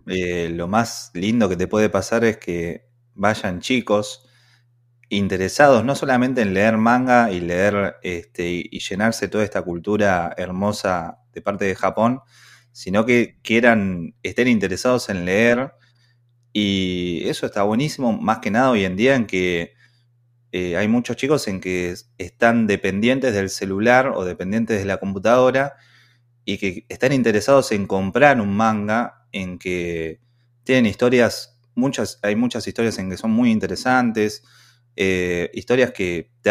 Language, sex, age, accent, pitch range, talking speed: Spanish, male, 20-39, Argentinian, 95-120 Hz, 145 wpm